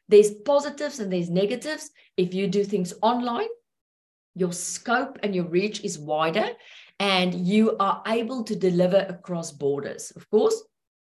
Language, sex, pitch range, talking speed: English, female, 185-230 Hz, 145 wpm